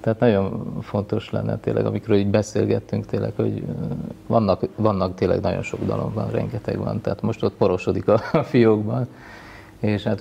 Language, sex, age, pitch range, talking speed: Hungarian, male, 30-49, 100-115 Hz, 160 wpm